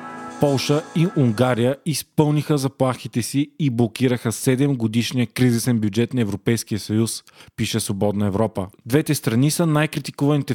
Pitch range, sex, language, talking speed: 115-145 Hz, male, Bulgarian, 125 wpm